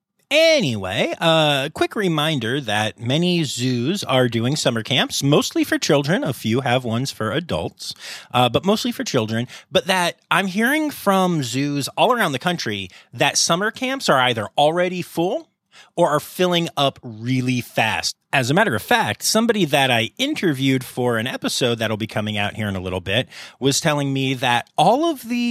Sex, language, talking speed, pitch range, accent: male, English, 175 wpm, 110-165 Hz, American